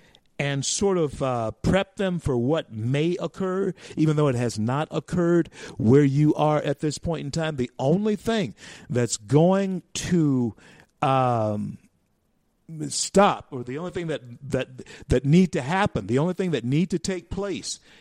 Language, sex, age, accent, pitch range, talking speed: English, male, 50-69, American, 130-185 Hz, 165 wpm